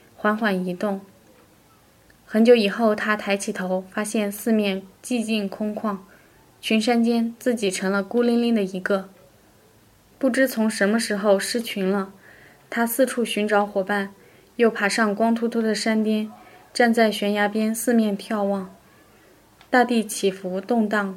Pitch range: 200-230 Hz